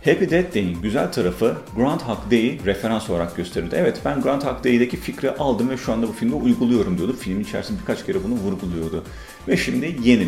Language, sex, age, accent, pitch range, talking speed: Turkish, male, 40-59, native, 95-135 Hz, 185 wpm